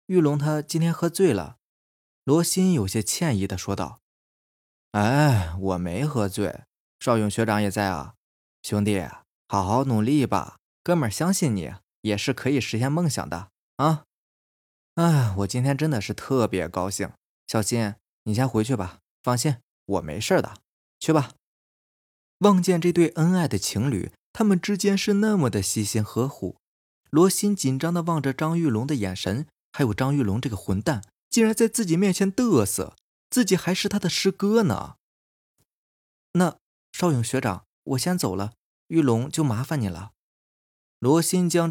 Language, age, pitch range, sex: Chinese, 20-39, 100-160 Hz, male